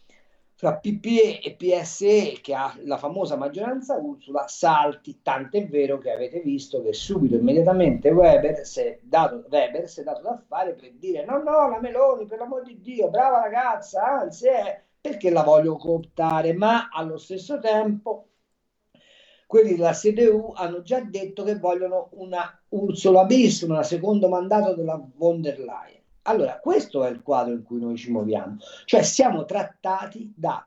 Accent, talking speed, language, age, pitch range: native, 165 wpm, Italian, 50-69, 155-230 Hz